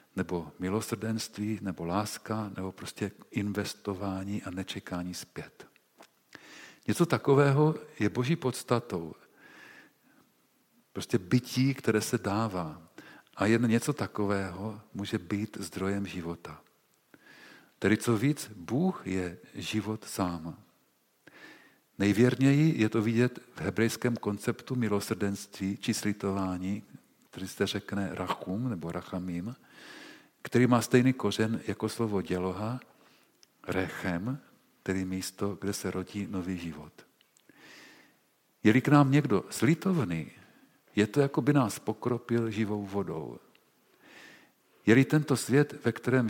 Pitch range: 95-125 Hz